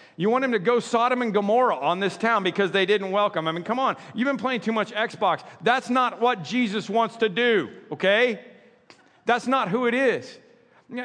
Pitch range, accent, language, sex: 145-220 Hz, American, English, male